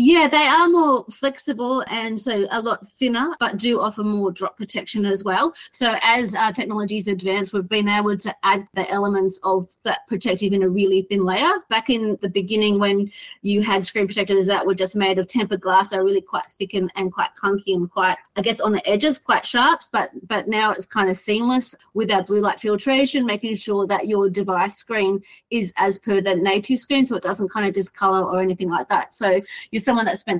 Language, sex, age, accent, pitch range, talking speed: English, female, 30-49, Australian, 190-225 Hz, 215 wpm